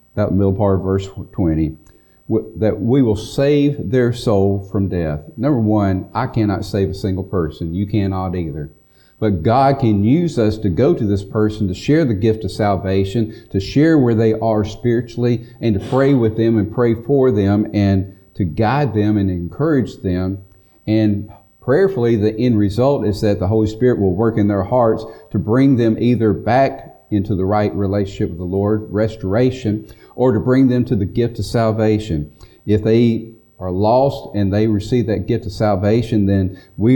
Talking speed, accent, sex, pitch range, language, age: 180 wpm, American, male, 100-125 Hz, English, 40-59